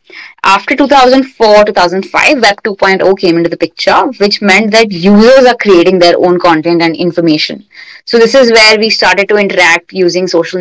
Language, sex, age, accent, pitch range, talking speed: English, female, 20-39, Indian, 175-230 Hz, 165 wpm